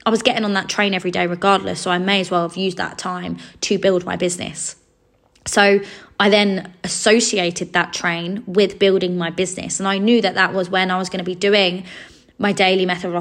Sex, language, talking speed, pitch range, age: female, English, 225 wpm, 180-210 Hz, 20-39